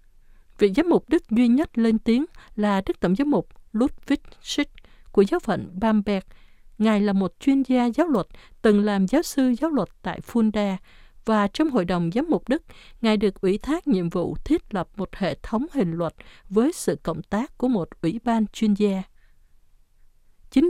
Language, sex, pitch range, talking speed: Vietnamese, female, 180-255 Hz, 190 wpm